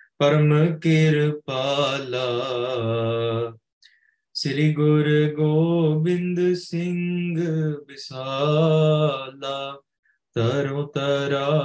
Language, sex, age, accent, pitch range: English, male, 20-39, Indian, 140-165 Hz